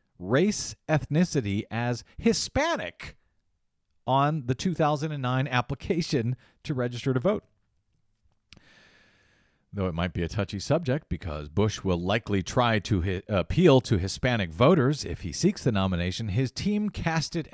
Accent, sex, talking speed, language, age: American, male, 130 wpm, English, 40-59